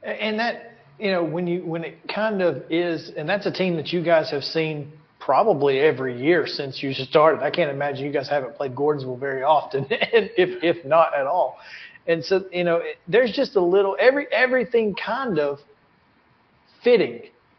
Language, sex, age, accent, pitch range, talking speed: English, male, 40-59, American, 155-210 Hz, 190 wpm